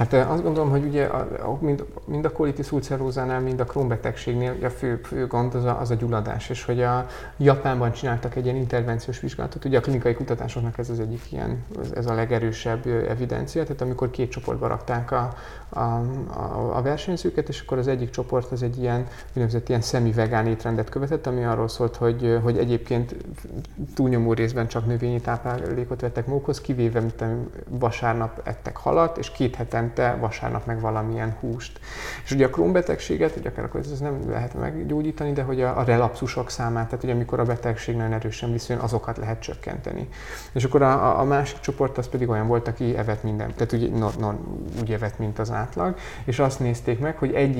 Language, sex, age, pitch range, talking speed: Hungarian, male, 30-49, 115-130 Hz, 190 wpm